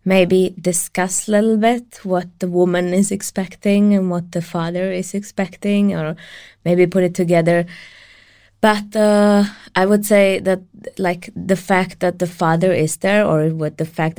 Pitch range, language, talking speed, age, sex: 155-185 Hz, Czech, 165 wpm, 20-39, female